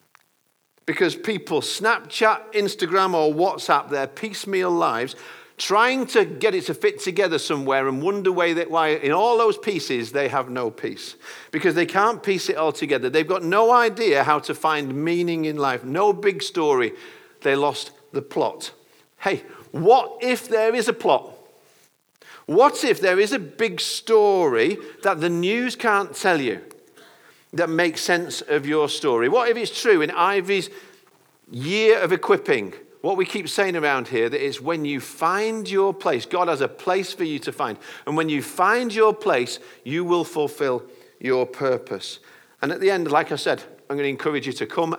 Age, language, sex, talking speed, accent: 50-69, English, male, 175 wpm, British